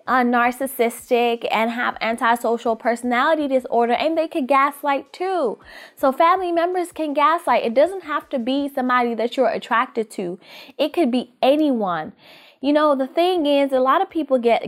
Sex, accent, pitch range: female, American, 210-290 Hz